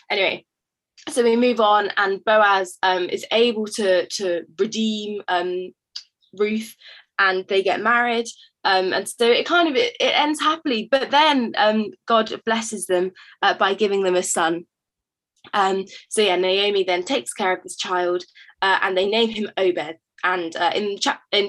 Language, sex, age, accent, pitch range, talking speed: English, female, 20-39, British, 180-235 Hz, 170 wpm